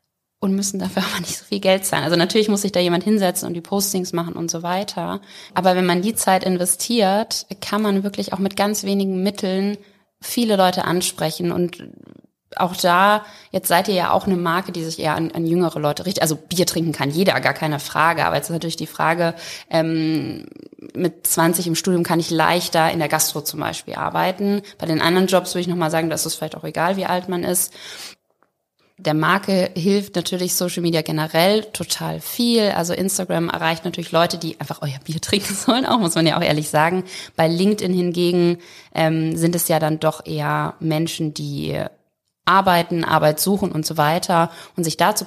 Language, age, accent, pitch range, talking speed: German, 20-39, German, 165-195 Hz, 200 wpm